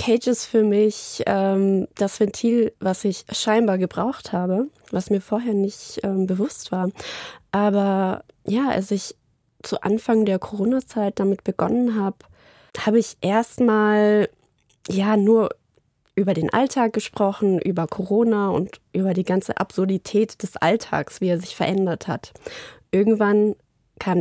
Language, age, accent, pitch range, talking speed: German, 20-39, German, 185-220 Hz, 135 wpm